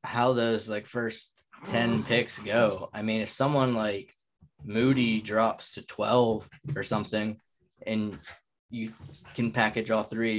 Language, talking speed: English, 145 wpm